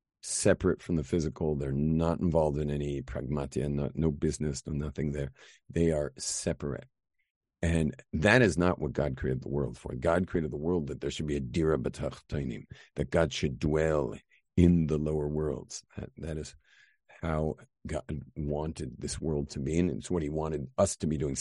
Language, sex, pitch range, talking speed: English, male, 75-95 Hz, 185 wpm